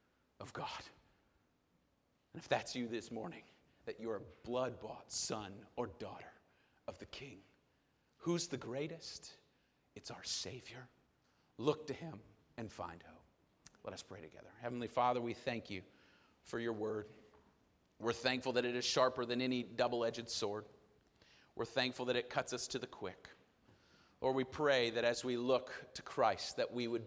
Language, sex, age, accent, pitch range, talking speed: English, male, 40-59, American, 115-130 Hz, 160 wpm